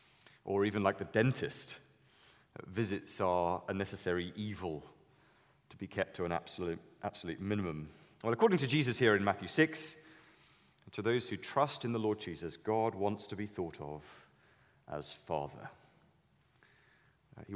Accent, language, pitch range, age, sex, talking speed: British, English, 95-130 Hz, 30-49, male, 145 wpm